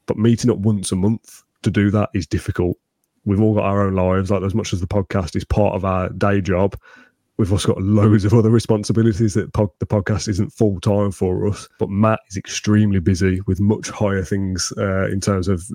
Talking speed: 215 wpm